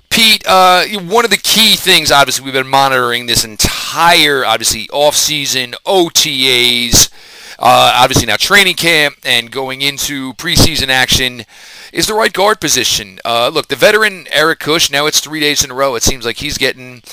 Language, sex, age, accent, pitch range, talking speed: English, male, 40-59, American, 130-180 Hz, 170 wpm